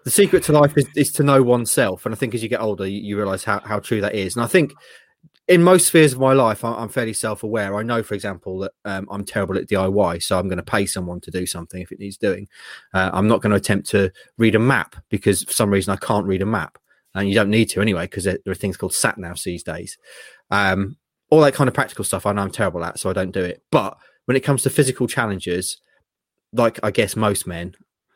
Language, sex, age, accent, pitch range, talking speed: English, male, 30-49, British, 95-115 Hz, 260 wpm